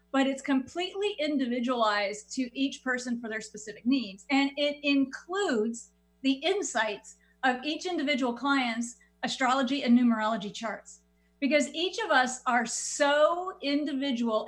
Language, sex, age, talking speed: English, female, 40-59, 130 wpm